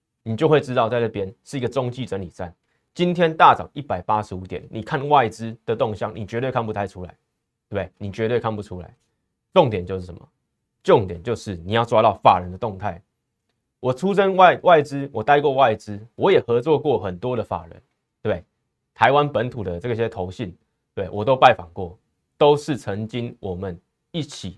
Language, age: Chinese, 30-49